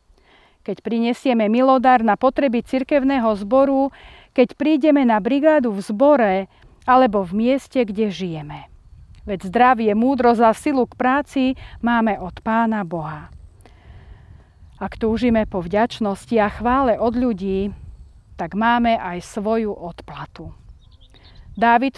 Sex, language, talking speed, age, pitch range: female, Slovak, 115 wpm, 40-59, 195-260 Hz